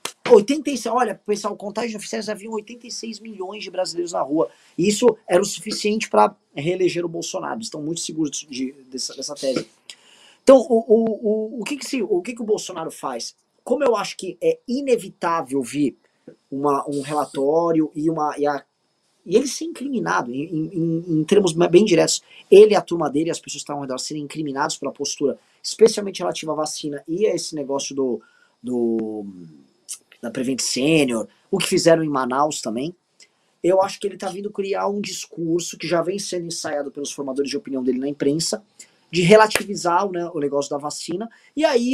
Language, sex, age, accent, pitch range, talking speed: Portuguese, male, 20-39, Brazilian, 145-225 Hz, 190 wpm